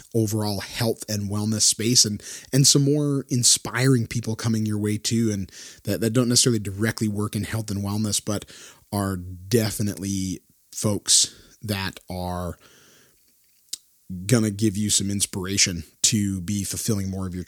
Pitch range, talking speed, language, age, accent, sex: 100-120 Hz, 150 wpm, English, 30-49, American, male